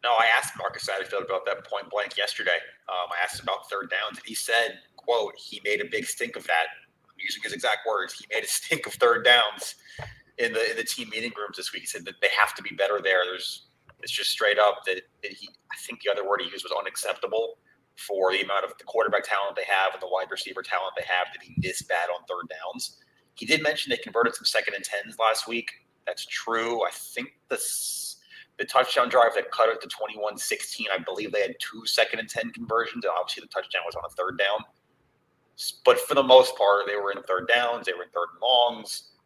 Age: 30-49